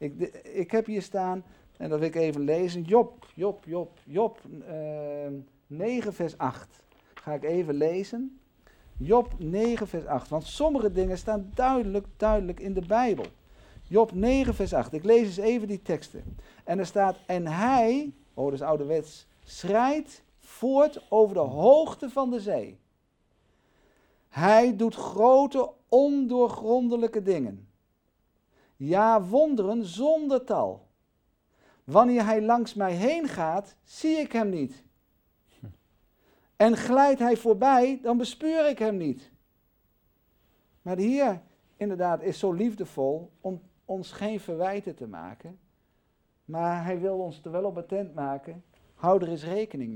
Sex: male